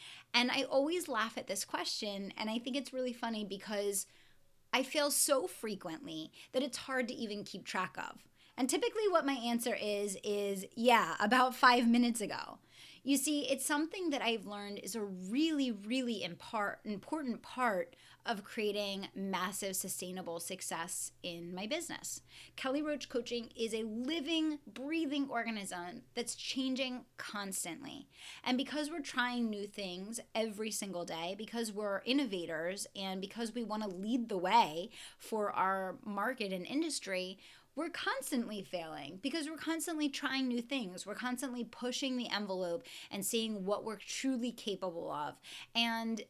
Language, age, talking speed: English, 20-39, 150 wpm